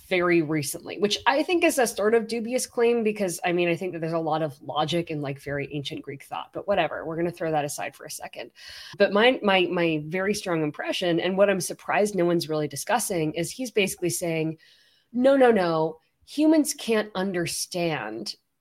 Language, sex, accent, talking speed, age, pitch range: English, female, American, 205 wpm, 20-39, 160-205 Hz